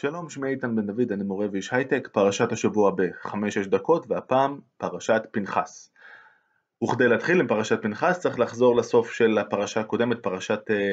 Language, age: Hebrew, 20-39